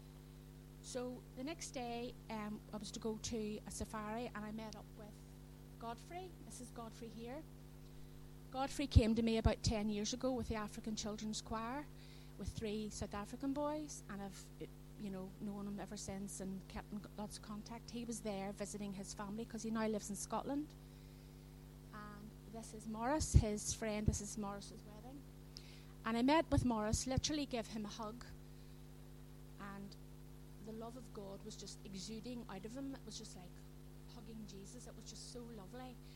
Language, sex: English, female